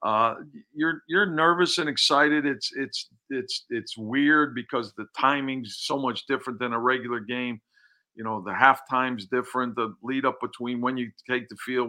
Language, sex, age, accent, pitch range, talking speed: English, male, 50-69, American, 120-150 Hz, 175 wpm